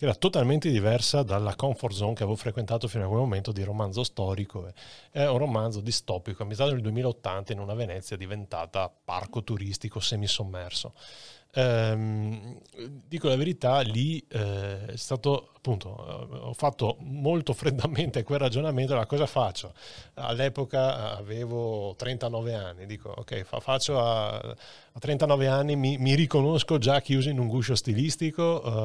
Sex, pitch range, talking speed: male, 110-135 Hz, 135 wpm